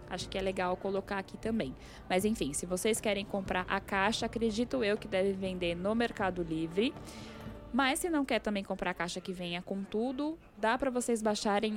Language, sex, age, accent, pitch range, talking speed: Portuguese, female, 10-29, Brazilian, 185-230 Hz, 200 wpm